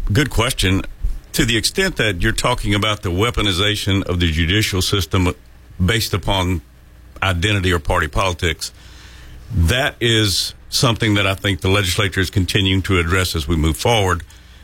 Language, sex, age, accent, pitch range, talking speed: English, male, 50-69, American, 90-110 Hz, 150 wpm